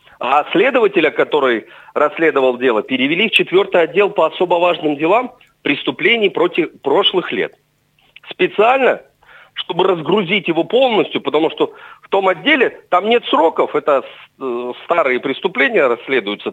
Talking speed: 125 wpm